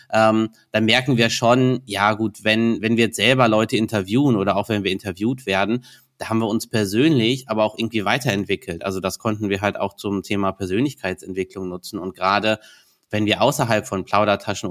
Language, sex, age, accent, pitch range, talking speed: German, male, 20-39, German, 100-115 Hz, 190 wpm